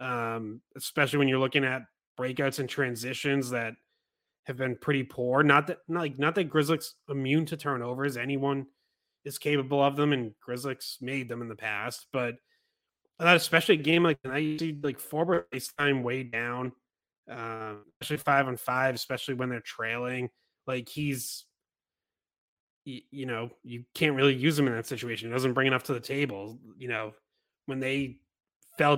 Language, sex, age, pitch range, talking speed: English, male, 20-39, 120-145 Hz, 175 wpm